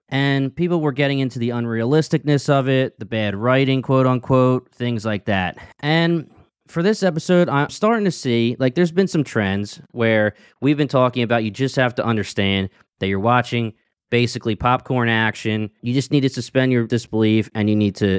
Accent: American